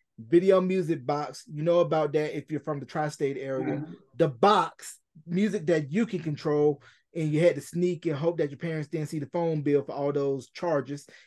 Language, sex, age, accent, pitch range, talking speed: English, male, 20-39, American, 150-180 Hz, 210 wpm